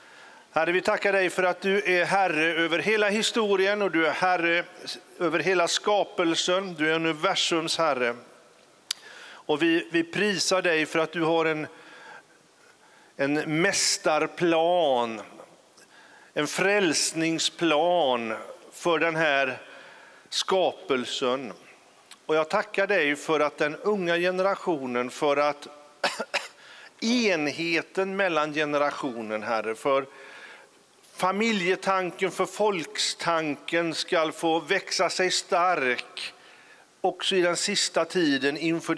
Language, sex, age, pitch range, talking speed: English, male, 50-69, 145-190 Hz, 110 wpm